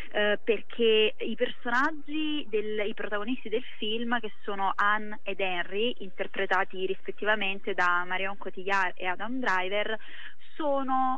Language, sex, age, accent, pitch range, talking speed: Italian, female, 20-39, native, 185-225 Hz, 115 wpm